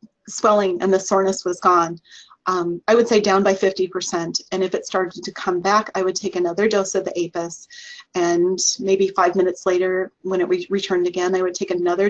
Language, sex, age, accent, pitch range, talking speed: English, female, 30-49, American, 180-205 Hz, 205 wpm